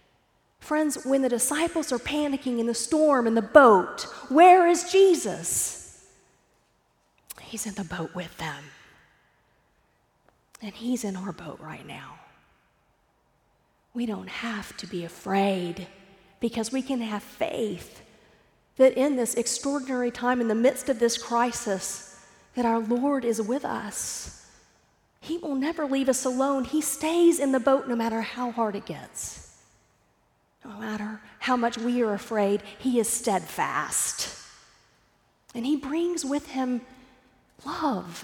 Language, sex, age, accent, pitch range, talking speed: English, female, 40-59, American, 190-265 Hz, 140 wpm